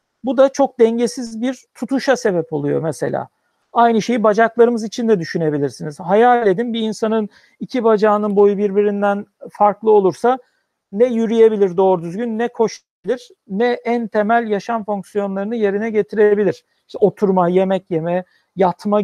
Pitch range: 195-240 Hz